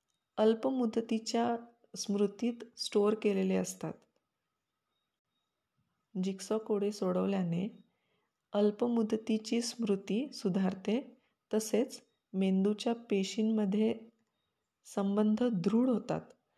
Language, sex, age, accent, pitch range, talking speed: Marathi, female, 20-39, native, 200-225 Hz, 60 wpm